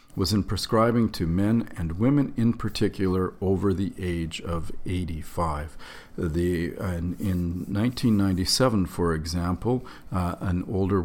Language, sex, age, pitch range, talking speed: English, male, 50-69, 90-105 Hz, 125 wpm